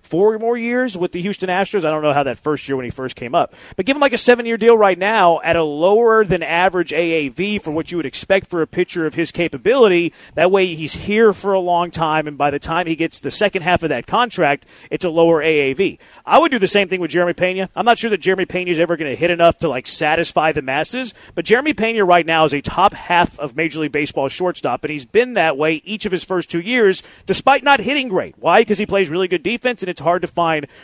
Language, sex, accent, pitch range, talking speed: English, male, American, 160-205 Hz, 265 wpm